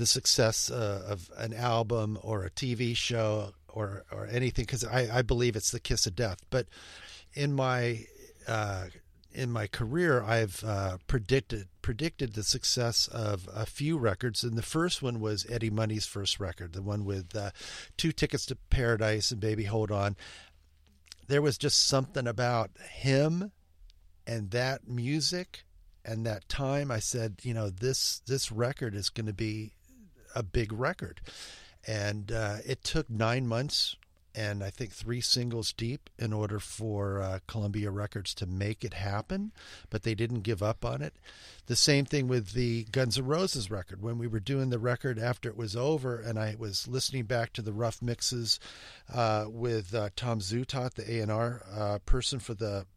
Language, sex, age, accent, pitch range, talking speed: English, male, 50-69, American, 105-125 Hz, 175 wpm